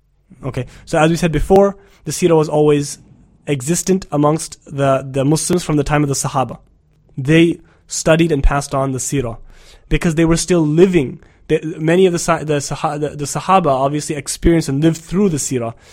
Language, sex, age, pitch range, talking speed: English, male, 20-39, 140-165 Hz, 185 wpm